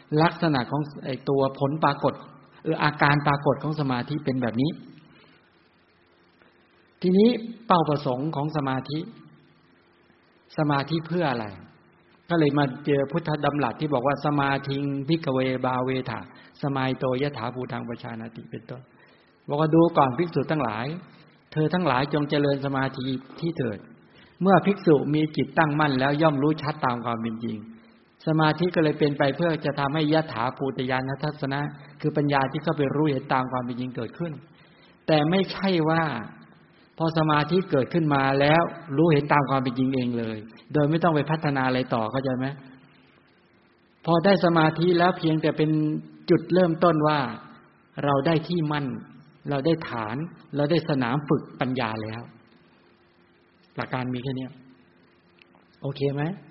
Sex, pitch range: male, 125-155 Hz